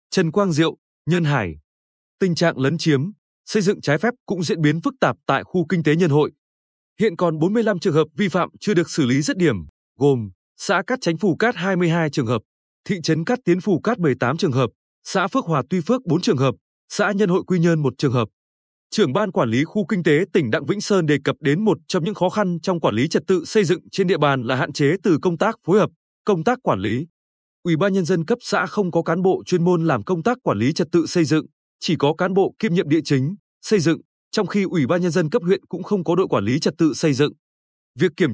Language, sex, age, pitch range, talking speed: Vietnamese, male, 20-39, 145-195 Hz, 255 wpm